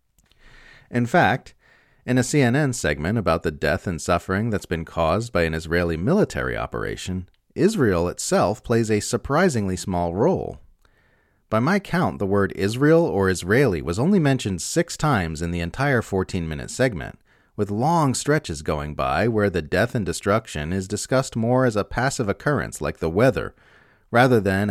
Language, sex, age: English, male, 40-59